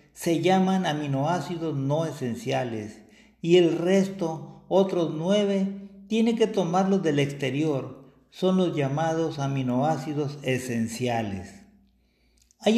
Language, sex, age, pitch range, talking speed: Spanish, male, 50-69, 140-185 Hz, 100 wpm